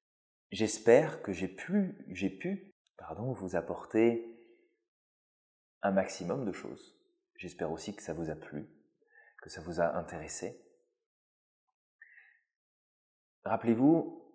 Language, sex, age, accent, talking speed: French, male, 30-49, French, 110 wpm